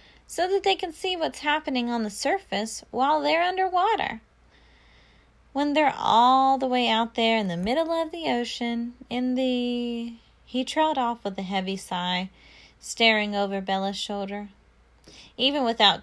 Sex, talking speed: female, 155 wpm